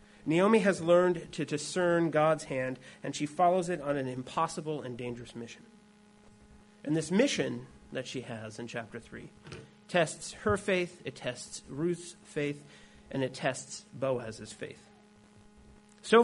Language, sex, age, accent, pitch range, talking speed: English, male, 30-49, American, 130-210 Hz, 145 wpm